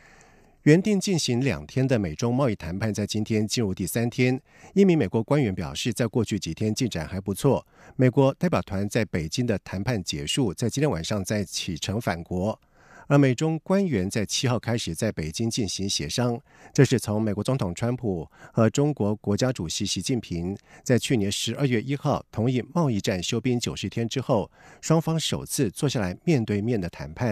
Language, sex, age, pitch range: German, male, 50-69, 100-135 Hz